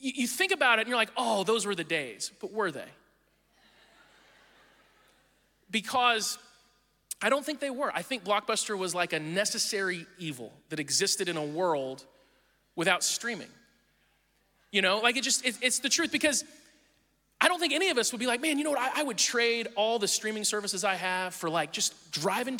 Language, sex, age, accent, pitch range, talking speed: English, male, 30-49, American, 180-255 Hz, 190 wpm